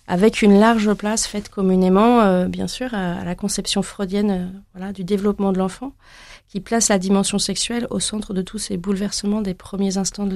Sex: female